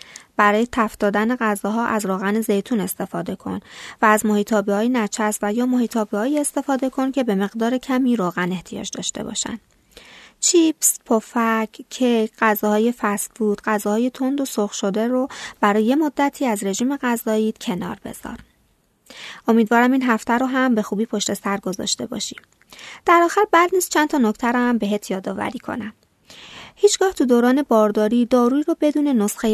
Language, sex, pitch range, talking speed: Persian, female, 205-255 Hz, 150 wpm